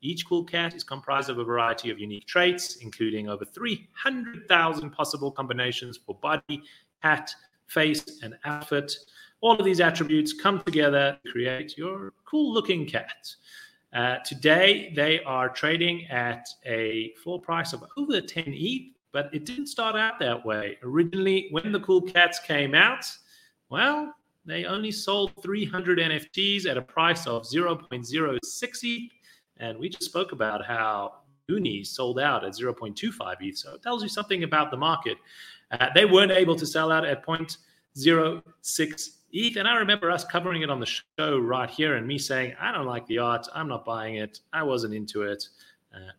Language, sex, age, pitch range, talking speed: English, male, 30-49, 125-180 Hz, 170 wpm